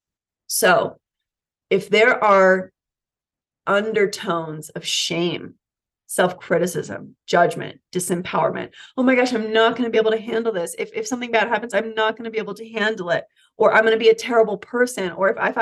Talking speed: 180 wpm